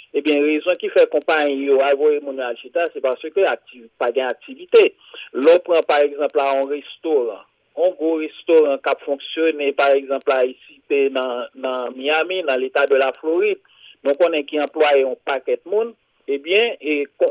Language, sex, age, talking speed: English, male, 50-69, 190 wpm